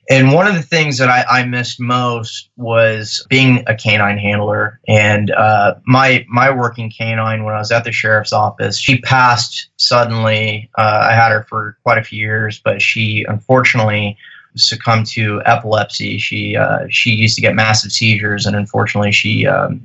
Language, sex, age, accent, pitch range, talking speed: English, male, 20-39, American, 110-125 Hz, 175 wpm